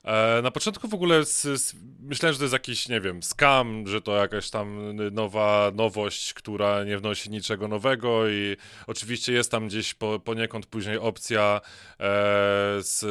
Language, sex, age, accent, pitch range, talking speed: Polish, male, 20-39, native, 105-130 Hz, 150 wpm